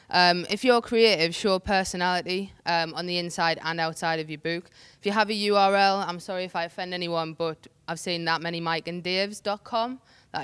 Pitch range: 170-205 Hz